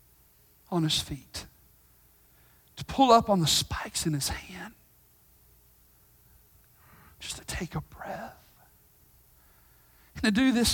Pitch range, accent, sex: 180-295 Hz, American, male